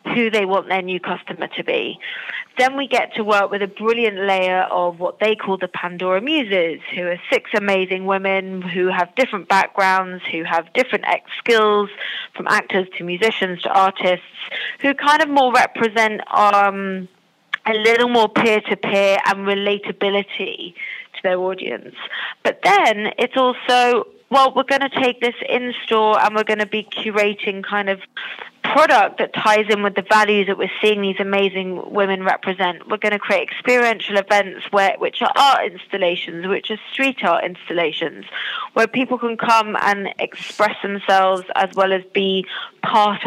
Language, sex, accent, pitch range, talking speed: English, female, British, 190-230 Hz, 165 wpm